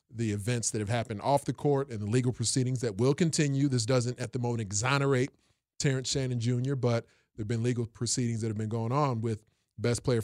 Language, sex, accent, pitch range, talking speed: English, male, American, 115-135 Hz, 225 wpm